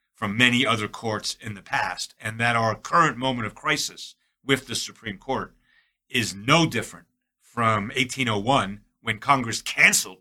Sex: male